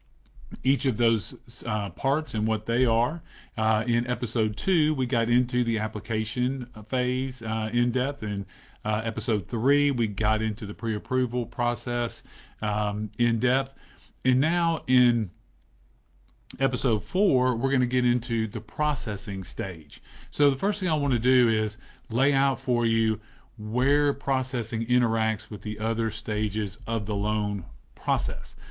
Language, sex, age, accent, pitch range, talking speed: English, male, 40-59, American, 110-130 Hz, 150 wpm